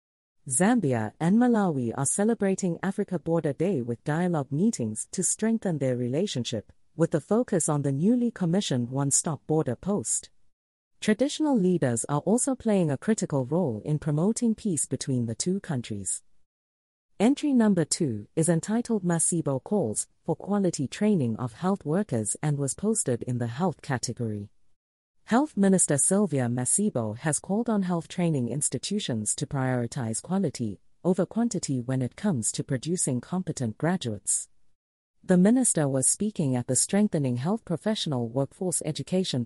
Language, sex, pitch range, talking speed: English, female, 125-195 Hz, 140 wpm